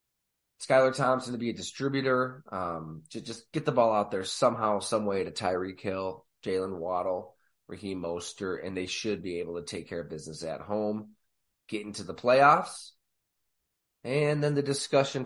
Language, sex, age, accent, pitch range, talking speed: English, male, 30-49, American, 95-130 Hz, 175 wpm